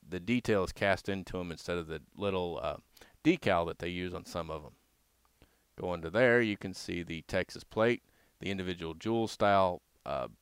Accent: American